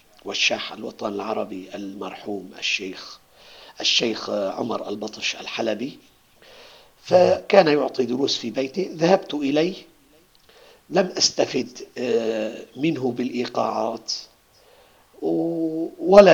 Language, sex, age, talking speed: Arabic, male, 50-69, 75 wpm